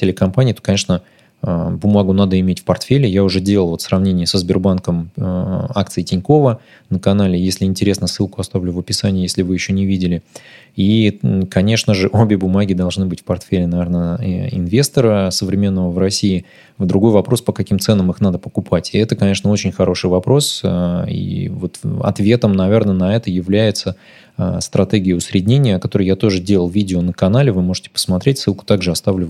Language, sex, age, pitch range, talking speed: Russian, male, 20-39, 90-105 Hz, 165 wpm